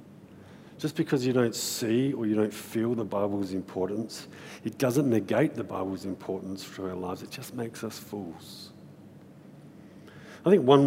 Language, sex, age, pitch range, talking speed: English, male, 50-69, 100-125 Hz, 160 wpm